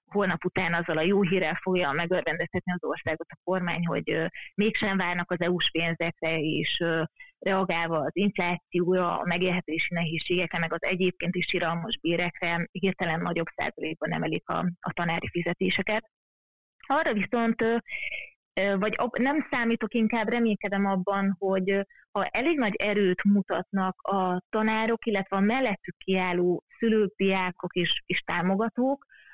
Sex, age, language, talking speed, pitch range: female, 30-49, Hungarian, 130 wpm, 175-205 Hz